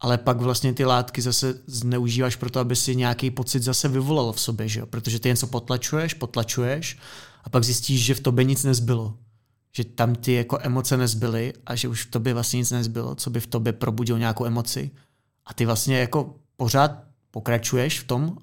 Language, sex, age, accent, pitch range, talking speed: Czech, male, 30-49, native, 120-135 Hz, 200 wpm